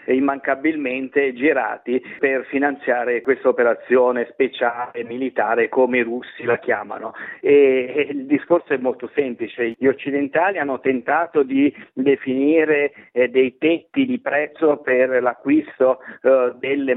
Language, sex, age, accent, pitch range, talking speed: Italian, male, 50-69, native, 130-155 Hz, 115 wpm